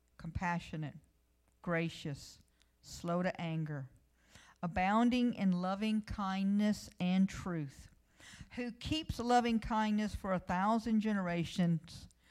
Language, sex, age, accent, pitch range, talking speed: English, female, 50-69, American, 145-200 Hz, 95 wpm